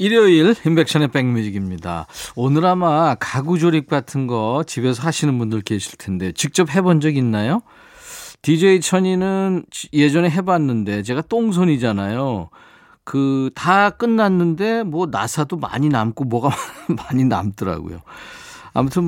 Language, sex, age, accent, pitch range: Korean, male, 40-59, native, 120-175 Hz